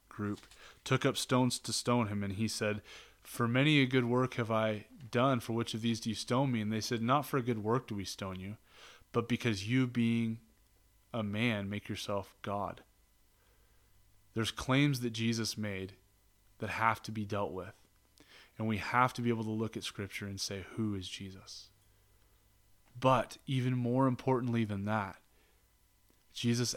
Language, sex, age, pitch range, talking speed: English, male, 20-39, 100-125 Hz, 180 wpm